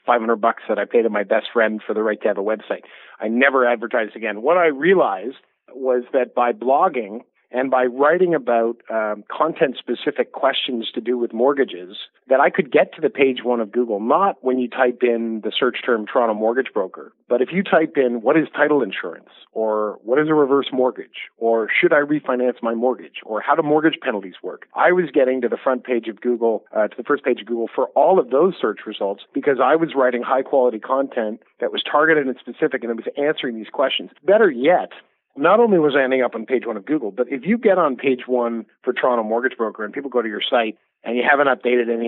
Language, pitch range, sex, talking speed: English, 115-135 Hz, male, 230 wpm